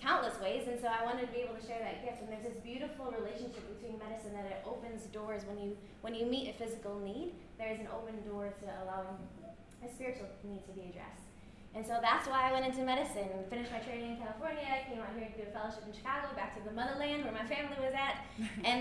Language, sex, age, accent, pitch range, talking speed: English, female, 10-29, American, 210-260 Hz, 245 wpm